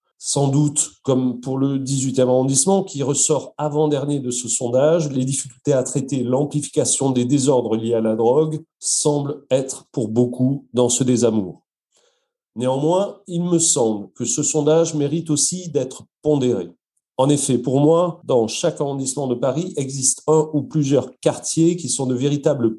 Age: 40-59